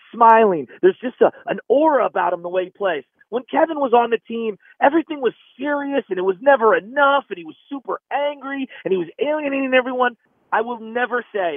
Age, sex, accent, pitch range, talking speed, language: 30-49, male, American, 190-255 Hz, 200 wpm, English